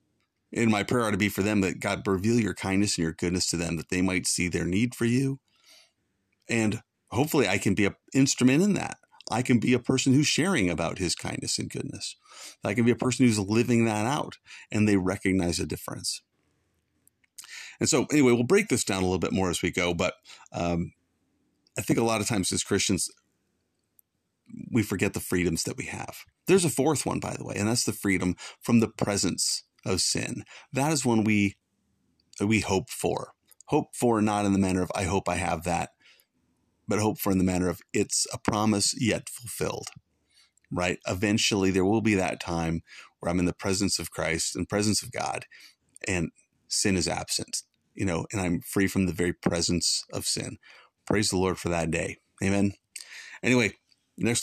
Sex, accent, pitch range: male, American, 90-115 Hz